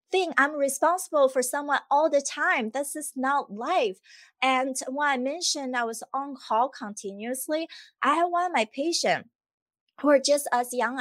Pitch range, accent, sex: 230-290 Hz, American, female